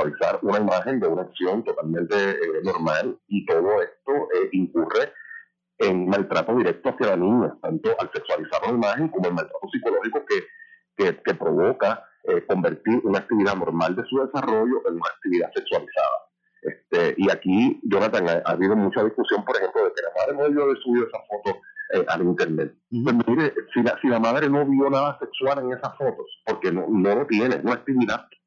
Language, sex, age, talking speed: Spanish, male, 40-59, 190 wpm